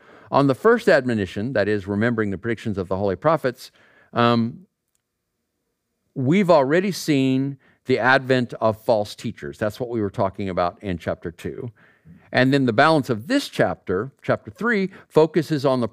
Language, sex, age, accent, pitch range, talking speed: English, male, 50-69, American, 95-130 Hz, 160 wpm